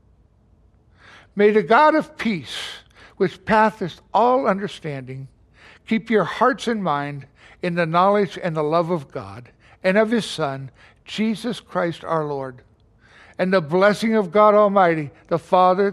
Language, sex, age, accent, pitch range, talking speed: English, male, 60-79, American, 110-180 Hz, 145 wpm